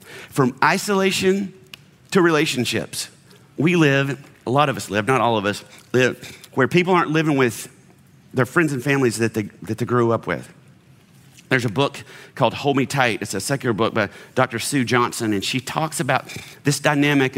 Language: English